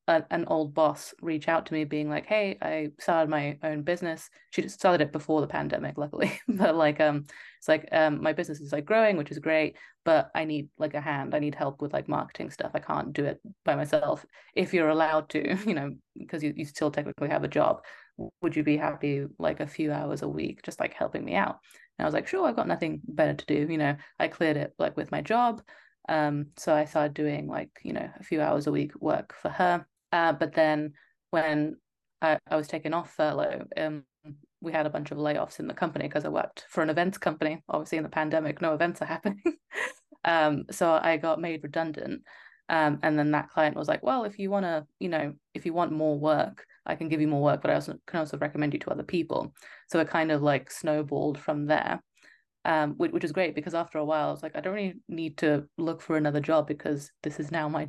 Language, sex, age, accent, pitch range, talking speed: English, female, 20-39, British, 150-165 Hz, 235 wpm